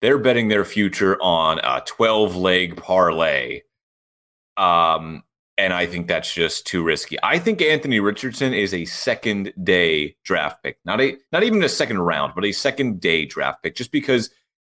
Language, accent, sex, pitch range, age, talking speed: English, American, male, 95-145 Hz, 30-49, 170 wpm